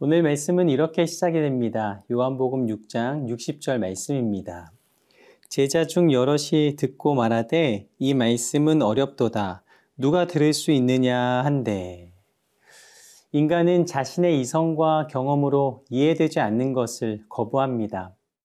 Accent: native